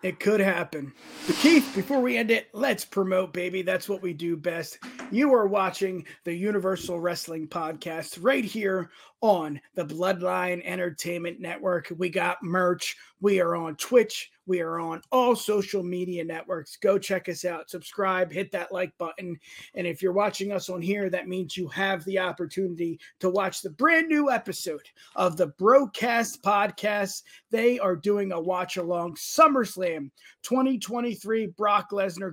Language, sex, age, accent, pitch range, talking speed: English, male, 30-49, American, 180-215 Hz, 160 wpm